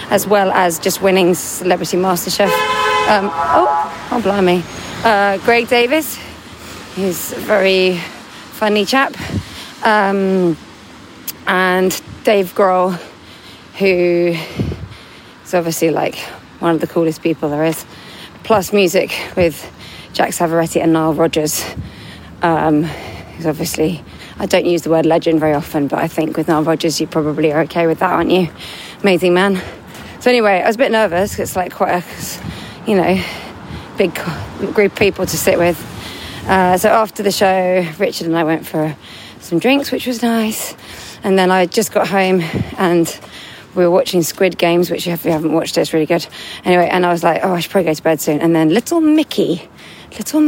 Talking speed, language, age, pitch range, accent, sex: 170 wpm, English, 30-49, 160-205 Hz, British, female